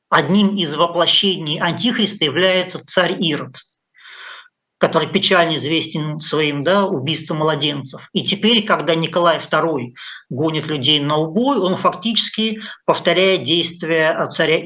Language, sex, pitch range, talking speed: Russian, male, 160-195 Hz, 110 wpm